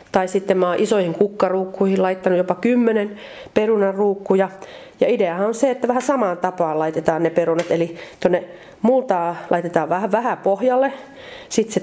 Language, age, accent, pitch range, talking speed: Finnish, 30-49, native, 175-215 Hz, 145 wpm